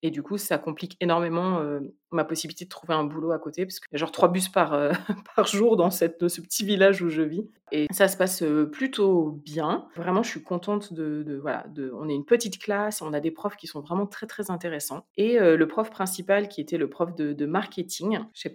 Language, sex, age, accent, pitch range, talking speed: French, female, 30-49, French, 160-205 Hz, 255 wpm